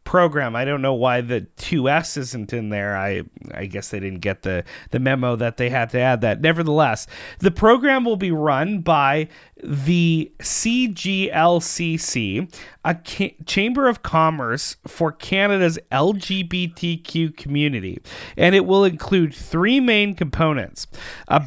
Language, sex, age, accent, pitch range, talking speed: English, male, 30-49, American, 135-190 Hz, 140 wpm